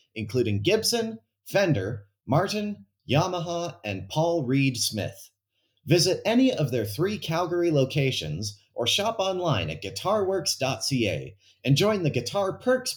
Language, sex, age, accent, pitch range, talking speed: English, male, 30-49, American, 105-165 Hz, 120 wpm